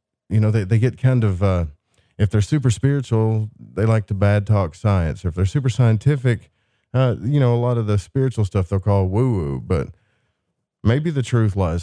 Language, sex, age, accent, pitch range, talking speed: English, male, 40-59, American, 95-115 Hz, 205 wpm